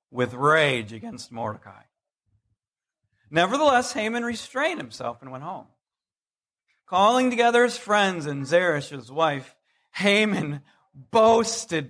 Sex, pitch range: male, 125-185 Hz